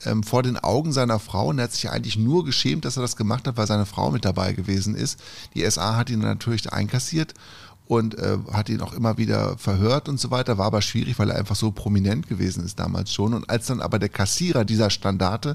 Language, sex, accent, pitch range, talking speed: German, male, German, 105-125 Hz, 235 wpm